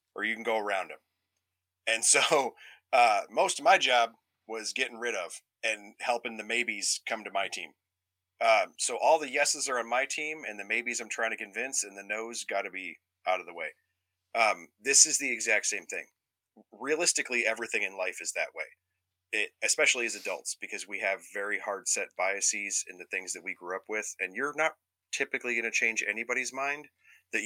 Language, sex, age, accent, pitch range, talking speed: English, male, 30-49, American, 90-120 Hz, 205 wpm